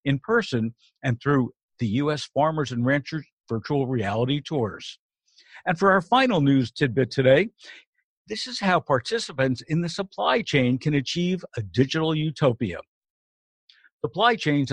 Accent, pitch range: American, 120-165 Hz